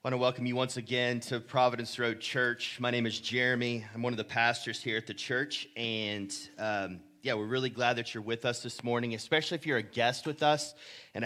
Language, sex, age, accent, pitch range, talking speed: English, male, 30-49, American, 120-150 Hz, 235 wpm